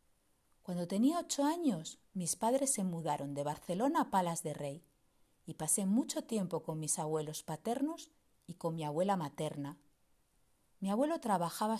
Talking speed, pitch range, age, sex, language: 155 wpm, 155-230 Hz, 40-59, female, Spanish